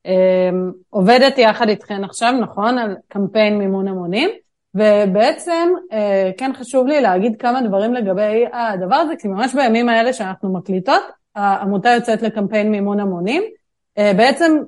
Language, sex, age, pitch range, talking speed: Hebrew, female, 30-49, 200-245 Hz, 125 wpm